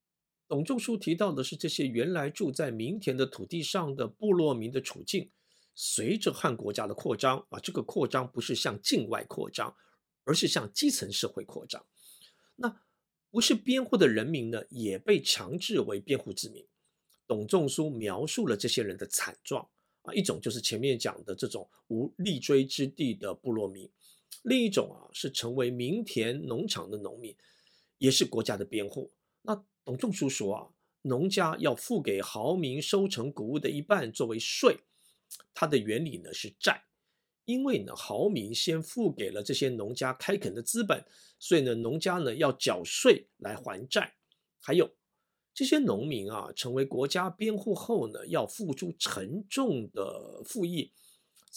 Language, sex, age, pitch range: Chinese, male, 50-69, 130-210 Hz